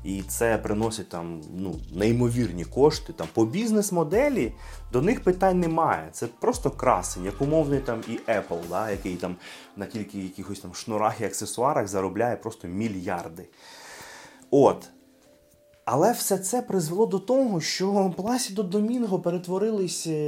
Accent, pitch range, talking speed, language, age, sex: native, 110-170 Hz, 135 wpm, Ukrainian, 30-49, male